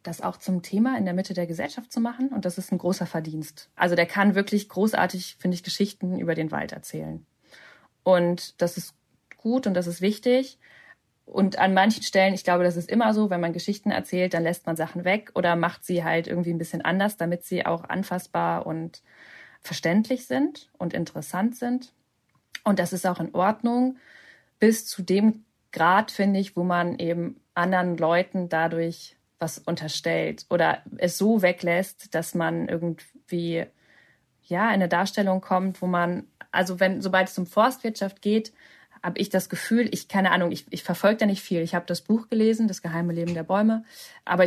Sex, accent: female, German